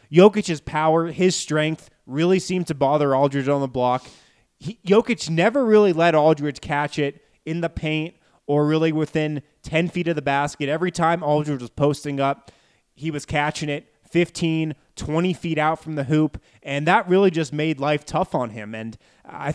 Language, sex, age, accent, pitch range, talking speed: English, male, 20-39, American, 130-160 Hz, 180 wpm